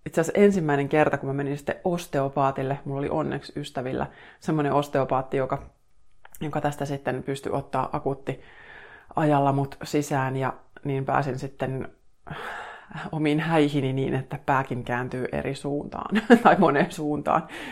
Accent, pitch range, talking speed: native, 130-155 Hz, 130 wpm